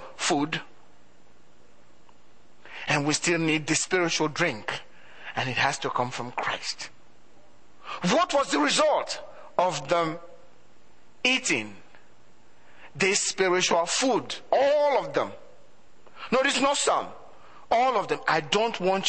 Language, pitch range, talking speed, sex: English, 155-260 Hz, 120 wpm, male